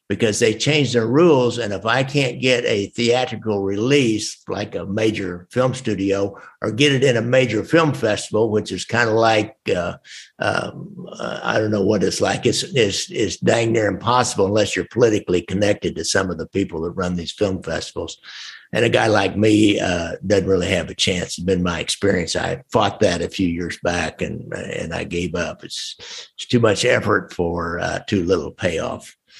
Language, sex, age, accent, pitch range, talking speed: English, male, 60-79, American, 90-115 Hz, 200 wpm